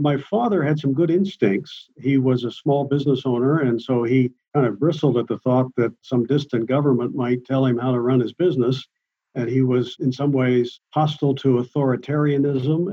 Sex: male